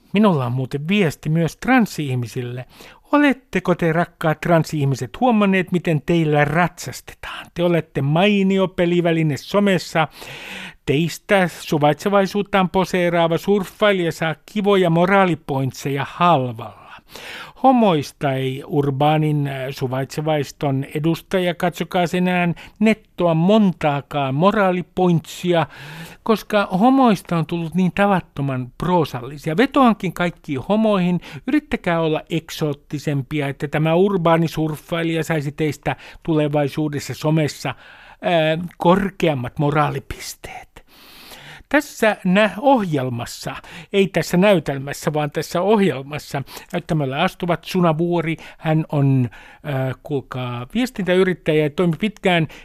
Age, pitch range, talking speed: 60-79, 145-190 Hz, 90 wpm